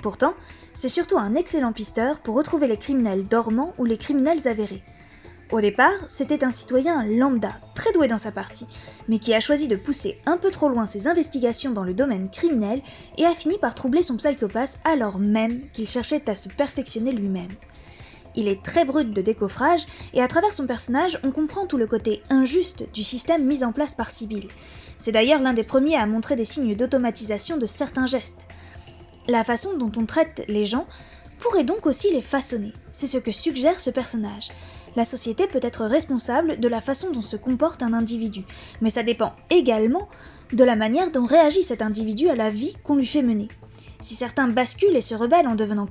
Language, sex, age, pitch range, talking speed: French, female, 20-39, 220-300 Hz, 195 wpm